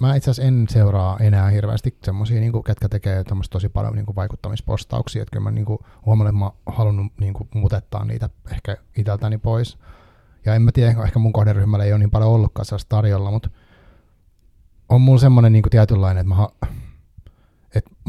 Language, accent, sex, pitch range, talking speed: Finnish, native, male, 100-115 Hz, 165 wpm